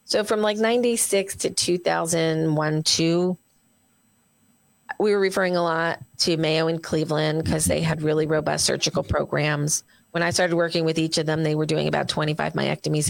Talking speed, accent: 170 wpm, American